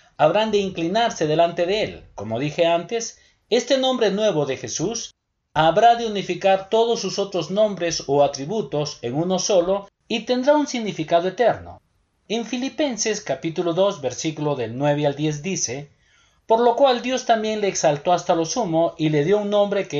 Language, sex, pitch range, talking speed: Spanish, male, 155-225 Hz, 170 wpm